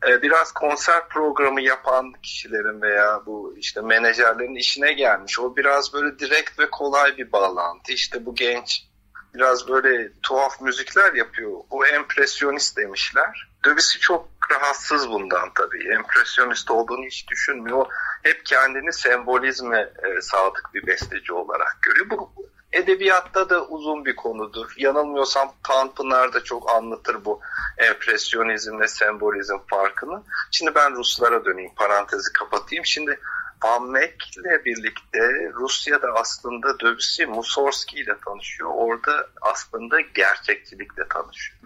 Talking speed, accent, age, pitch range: 120 wpm, native, 50-69, 125-190 Hz